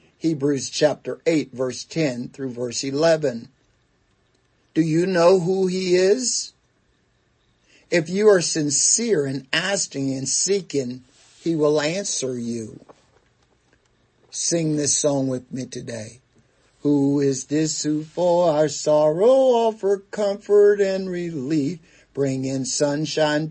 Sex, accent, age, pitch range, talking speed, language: male, American, 60-79, 145-200 Hz, 115 wpm, English